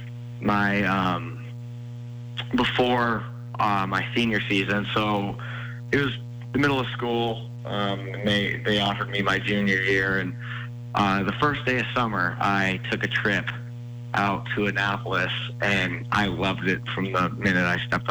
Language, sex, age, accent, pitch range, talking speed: English, male, 20-39, American, 100-120 Hz, 150 wpm